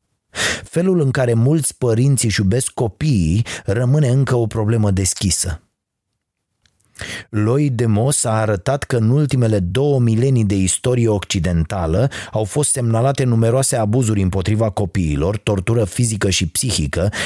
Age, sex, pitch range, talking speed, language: 30-49, male, 100-130 Hz, 130 wpm, Romanian